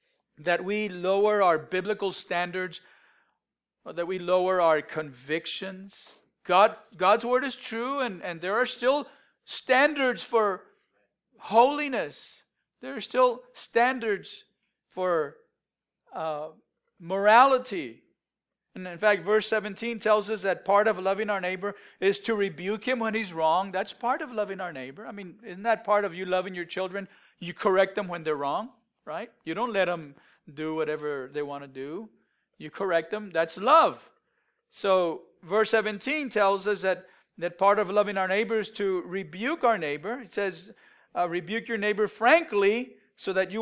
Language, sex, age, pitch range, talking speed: English, male, 50-69, 180-225 Hz, 160 wpm